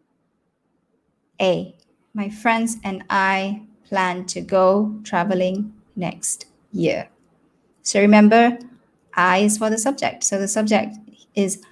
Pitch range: 195-240 Hz